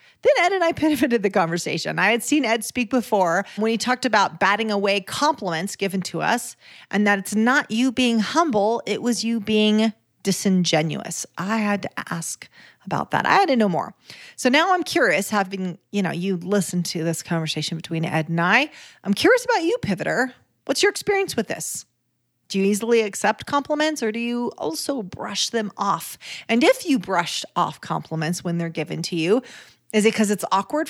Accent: American